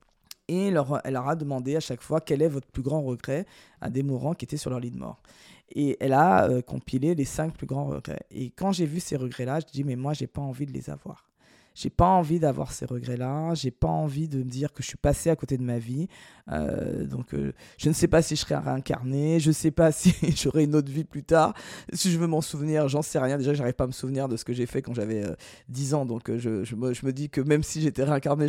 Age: 20-39